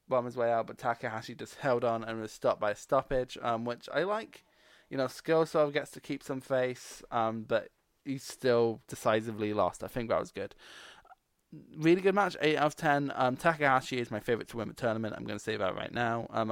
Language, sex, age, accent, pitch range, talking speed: English, male, 20-39, British, 115-145 Hz, 220 wpm